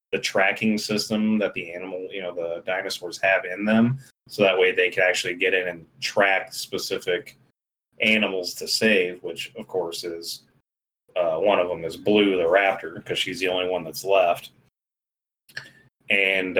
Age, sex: 30-49, male